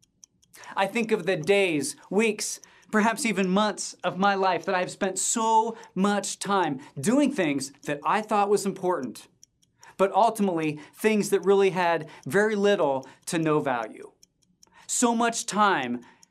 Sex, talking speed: male, 145 wpm